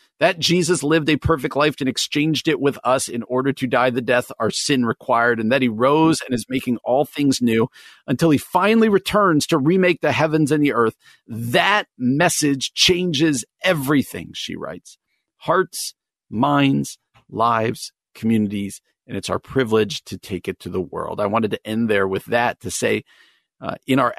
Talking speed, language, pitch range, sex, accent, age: 180 wpm, English, 115-155 Hz, male, American, 50-69